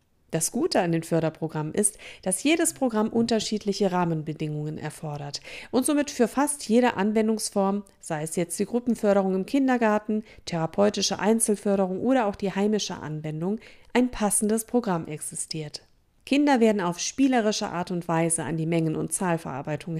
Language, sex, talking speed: German, female, 145 wpm